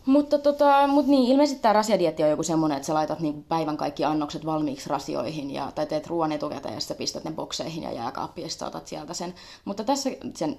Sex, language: female, Finnish